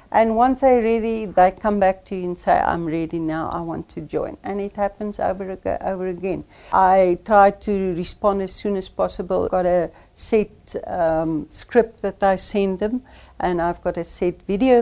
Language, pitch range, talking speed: English, 175-210 Hz, 195 wpm